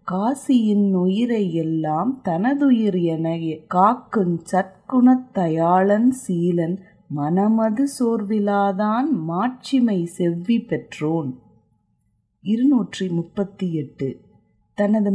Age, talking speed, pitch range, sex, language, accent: 30-49, 65 wpm, 170-235 Hz, female, Tamil, native